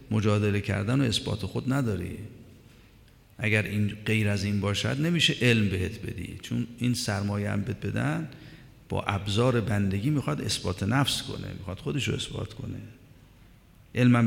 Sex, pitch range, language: male, 105-130 Hz, Persian